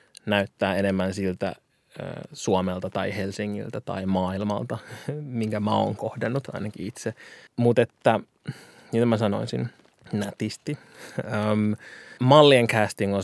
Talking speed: 110 wpm